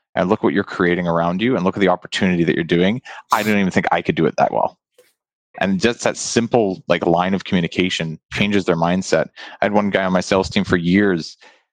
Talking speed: 235 wpm